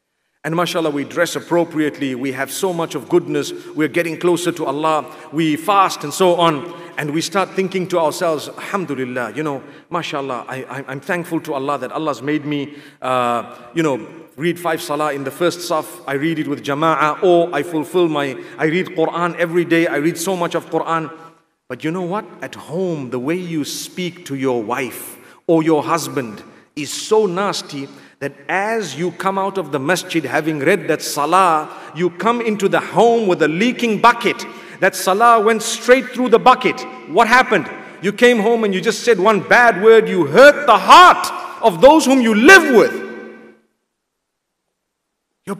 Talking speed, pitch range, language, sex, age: 185 wpm, 155-225 Hz, English, male, 40-59